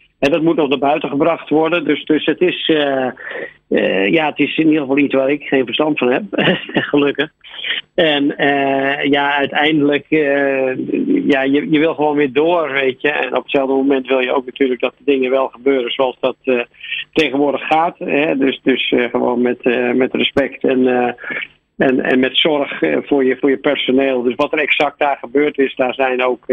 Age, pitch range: 50-69, 130-145 Hz